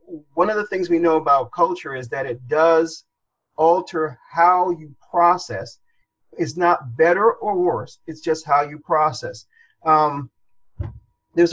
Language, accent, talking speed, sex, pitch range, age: English, American, 145 wpm, male, 140-175 Hz, 40-59